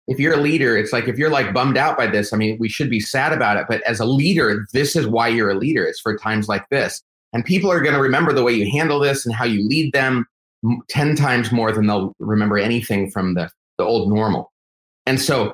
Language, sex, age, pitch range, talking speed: English, male, 30-49, 105-140 Hz, 255 wpm